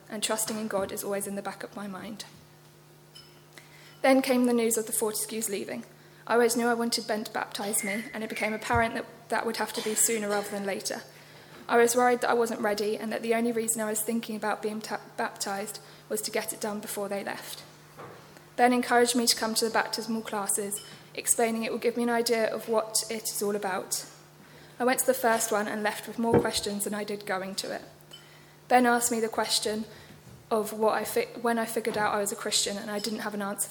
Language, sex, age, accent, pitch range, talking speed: English, female, 20-39, British, 210-230 Hz, 235 wpm